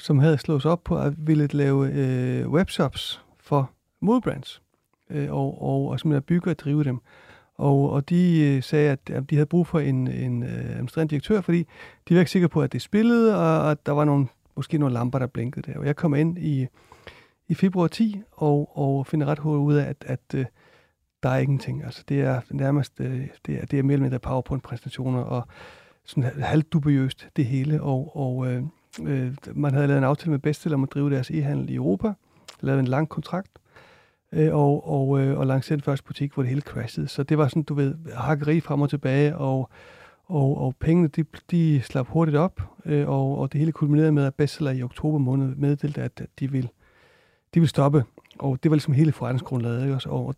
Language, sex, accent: Danish, male, native